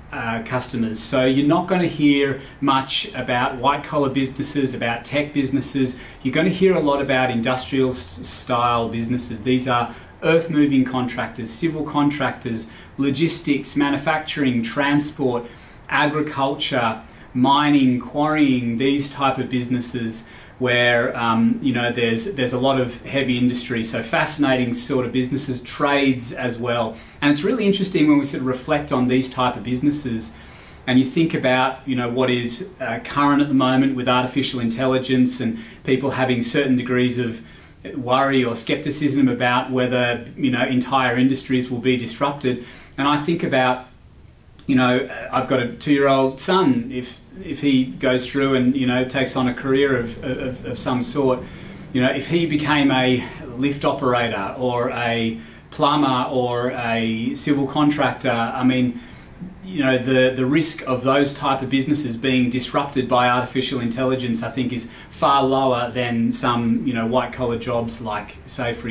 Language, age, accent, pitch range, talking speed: English, 30-49, Australian, 120-140 Hz, 160 wpm